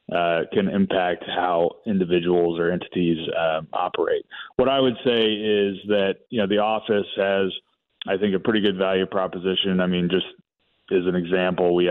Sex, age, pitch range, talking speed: male, 30-49, 90-100 Hz, 170 wpm